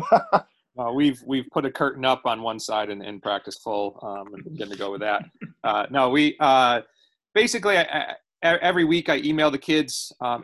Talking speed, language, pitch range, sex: 200 wpm, English, 115-140 Hz, male